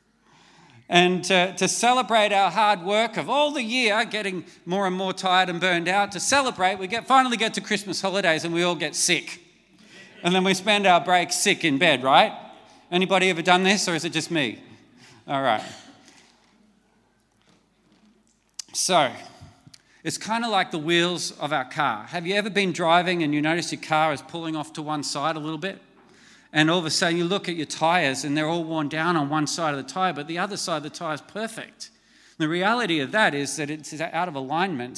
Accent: Australian